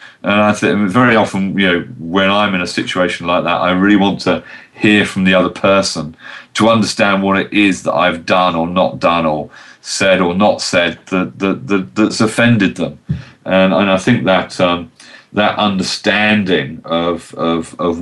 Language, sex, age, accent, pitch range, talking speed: English, male, 40-59, British, 90-115 Hz, 185 wpm